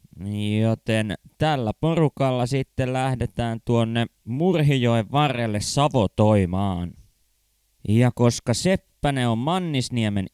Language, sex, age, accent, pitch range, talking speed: Finnish, male, 20-39, native, 105-135 Hz, 80 wpm